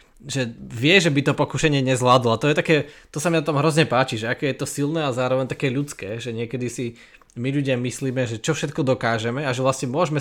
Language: Slovak